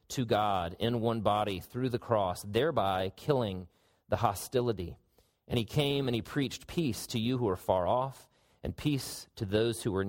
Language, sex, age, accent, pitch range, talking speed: English, male, 40-59, American, 110-135 Hz, 185 wpm